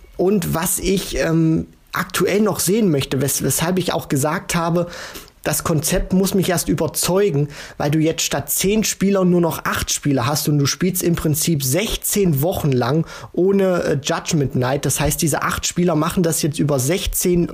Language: German